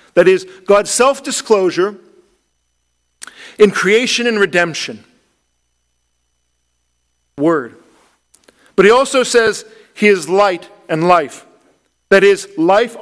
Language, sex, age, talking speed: English, male, 50-69, 95 wpm